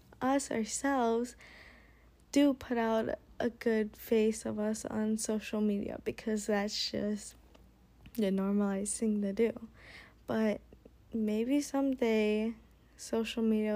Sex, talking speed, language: female, 115 wpm, English